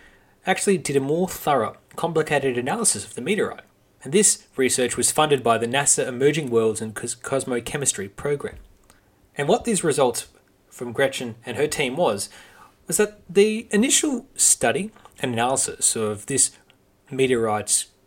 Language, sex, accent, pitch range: English, male, Australian, 125-195 Hz